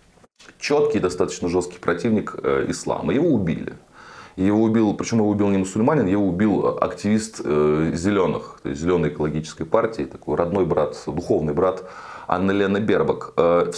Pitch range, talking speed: 80-115 Hz, 145 wpm